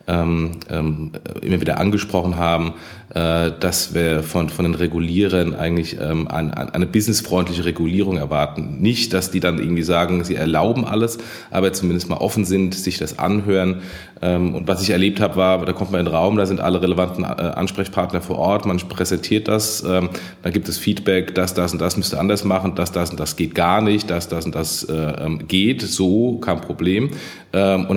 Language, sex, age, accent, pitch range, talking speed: German, male, 30-49, German, 90-100 Hz, 175 wpm